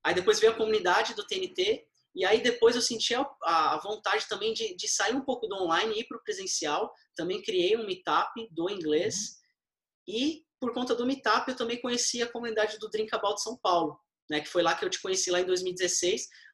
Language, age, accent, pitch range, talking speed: Portuguese, 20-39, Brazilian, 170-240 Hz, 215 wpm